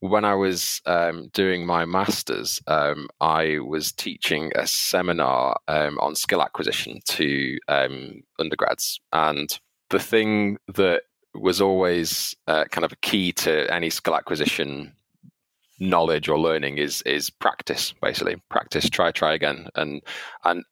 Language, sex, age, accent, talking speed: English, male, 20-39, British, 140 wpm